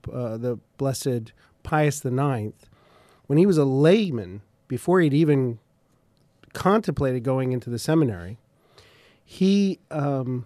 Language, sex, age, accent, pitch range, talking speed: English, male, 40-59, American, 125-155 Hz, 115 wpm